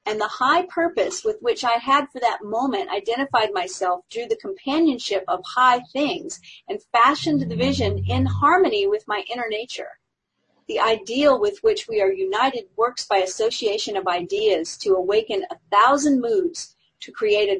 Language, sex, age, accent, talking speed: English, female, 40-59, American, 165 wpm